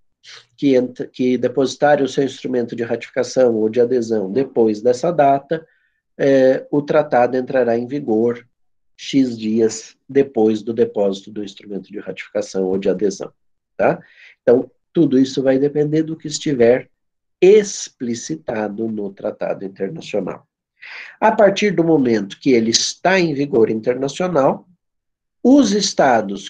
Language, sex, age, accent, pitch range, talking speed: Portuguese, male, 50-69, Brazilian, 110-160 Hz, 125 wpm